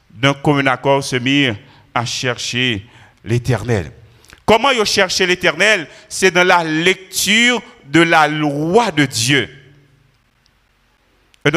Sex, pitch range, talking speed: male, 150-190 Hz, 110 wpm